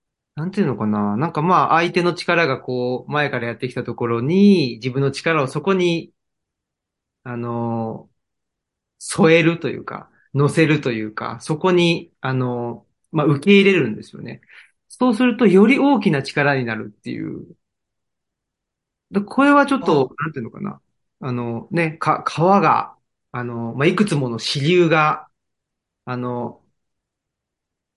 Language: Japanese